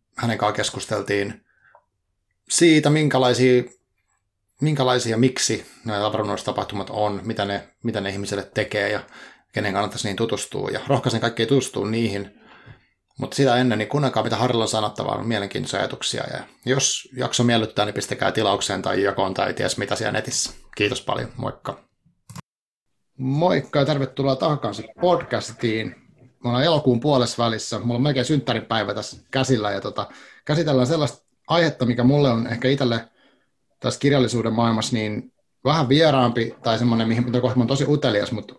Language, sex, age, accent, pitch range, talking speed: Finnish, male, 30-49, native, 110-130 Hz, 145 wpm